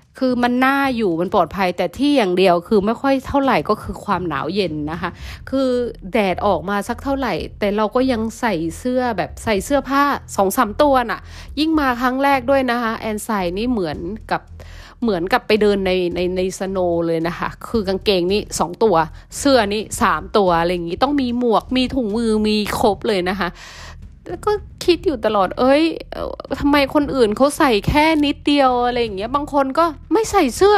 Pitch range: 185-255 Hz